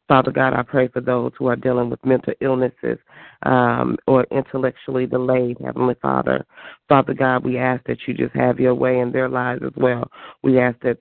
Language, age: English, 40-59